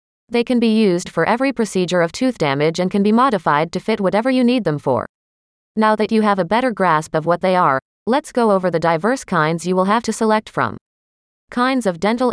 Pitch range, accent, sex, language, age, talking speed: 170-230 Hz, American, female, English, 30-49, 230 wpm